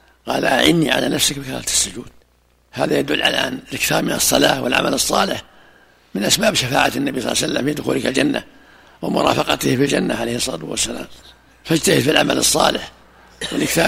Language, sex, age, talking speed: Arabic, male, 60-79, 160 wpm